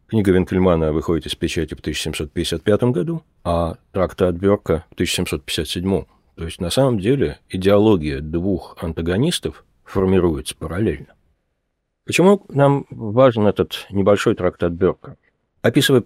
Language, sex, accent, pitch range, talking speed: Russian, male, native, 80-100 Hz, 125 wpm